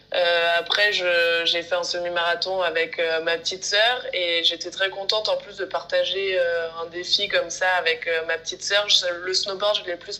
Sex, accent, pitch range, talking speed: female, French, 170-195 Hz, 205 wpm